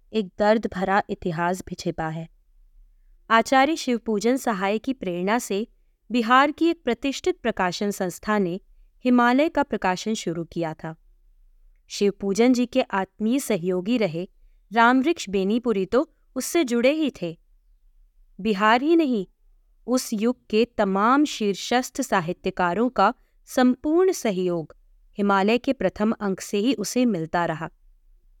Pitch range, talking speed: 190-260 Hz, 125 wpm